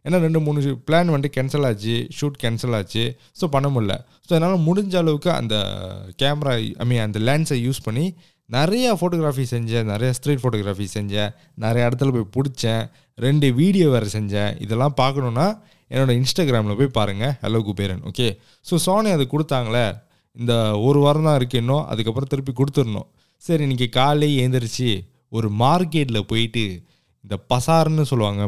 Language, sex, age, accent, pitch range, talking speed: Tamil, male, 20-39, native, 115-155 Hz, 150 wpm